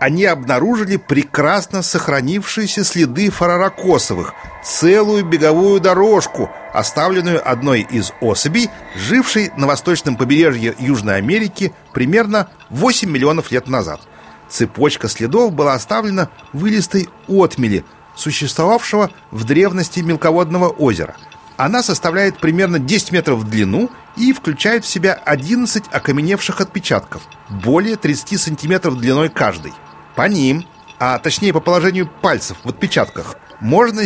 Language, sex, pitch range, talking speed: Russian, male, 145-200 Hz, 115 wpm